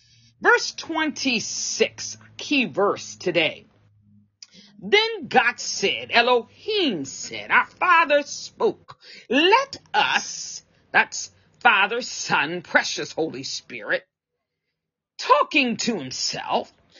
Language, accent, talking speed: English, American, 85 wpm